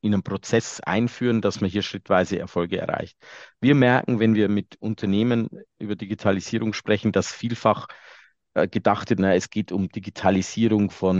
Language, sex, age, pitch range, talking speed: German, male, 50-69, 95-115 Hz, 160 wpm